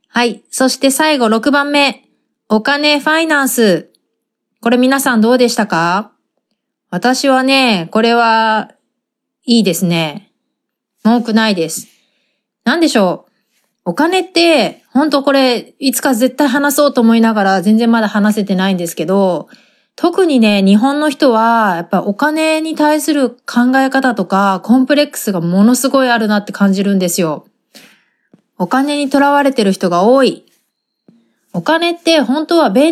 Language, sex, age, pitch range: Japanese, female, 30-49, 210-275 Hz